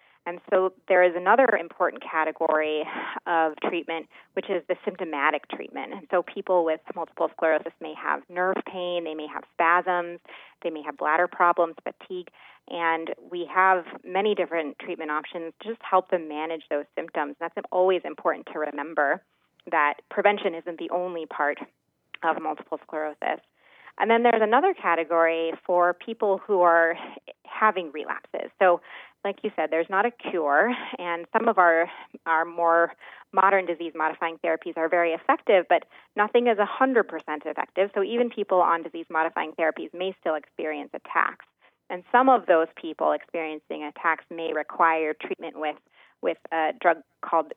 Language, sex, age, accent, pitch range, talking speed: English, female, 20-39, American, 160-185 Hz, 155 wpm